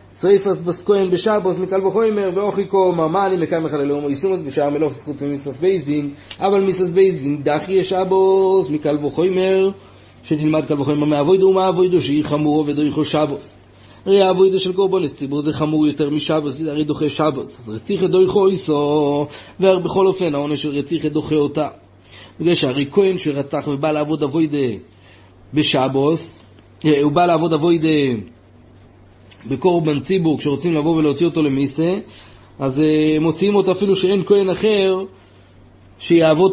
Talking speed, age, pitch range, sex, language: 125 wpm, 30-49, 140-185 Hz, male, Hebrew